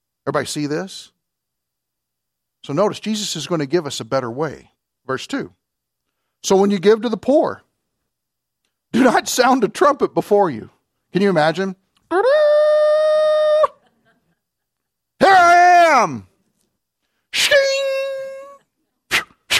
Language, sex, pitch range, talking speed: English, male, 135-205 Hz, 110 wpm